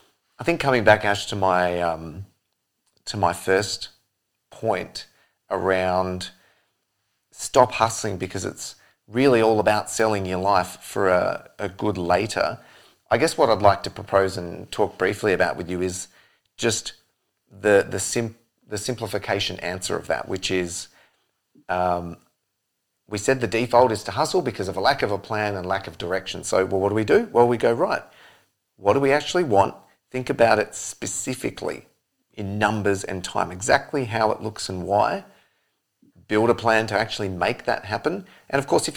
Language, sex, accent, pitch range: English, male, Australian, 95-115 Hz